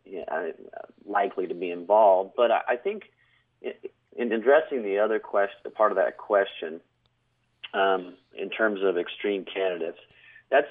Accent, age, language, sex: American, 40-59, English, male